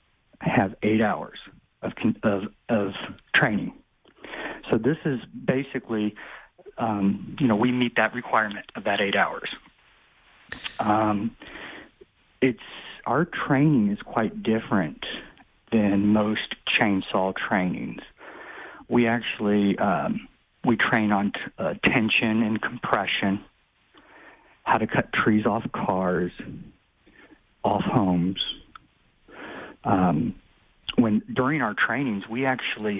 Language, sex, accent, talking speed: English, male, American, 105 wpm